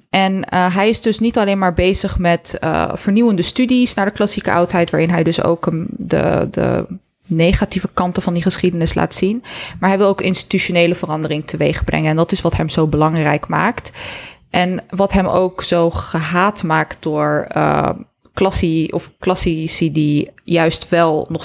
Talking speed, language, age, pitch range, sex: 175 wpm, Dutch, 20-39, 165-205 Hz, female